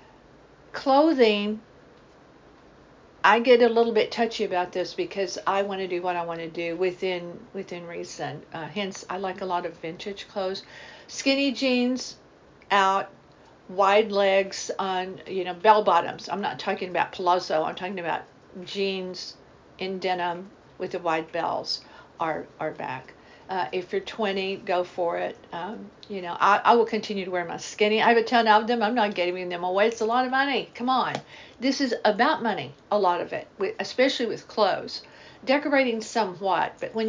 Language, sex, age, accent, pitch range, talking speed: English, female, 50-69, American, 185-225 Hz, 180 wpm